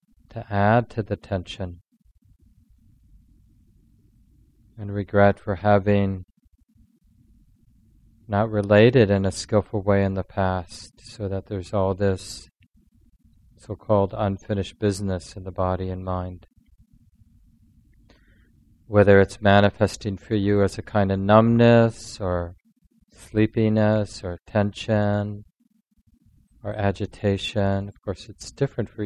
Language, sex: English, male